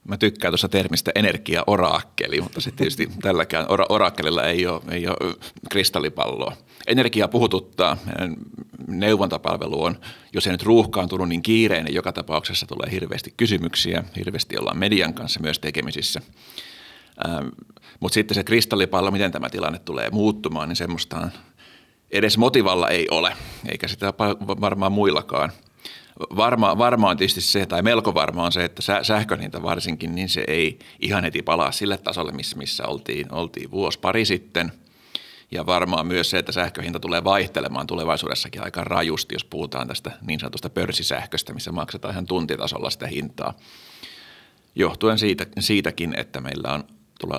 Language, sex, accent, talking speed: Finnish, male, native, 140 wpm